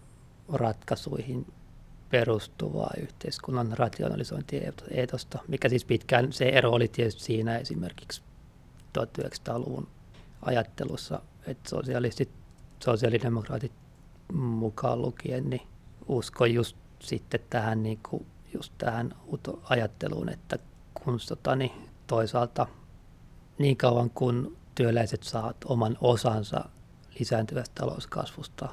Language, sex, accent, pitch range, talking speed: Finnish, male, native, 115-130 Hz, 90 wpm